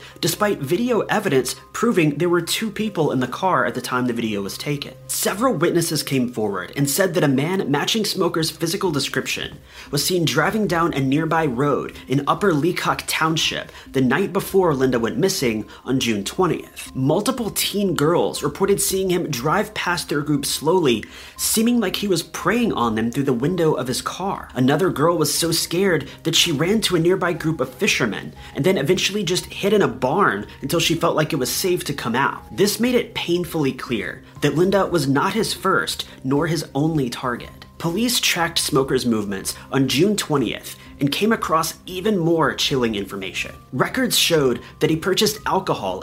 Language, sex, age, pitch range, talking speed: English, male, 30-49, 130-185 Hz, 185 wpm